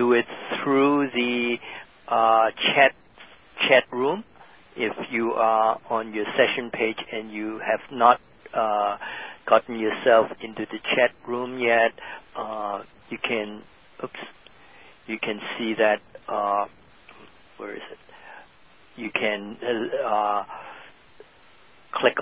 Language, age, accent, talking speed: English, 50-69, American, 115 wpm